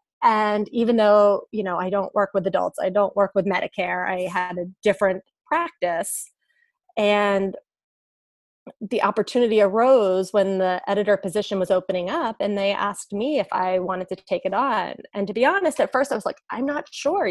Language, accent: English, American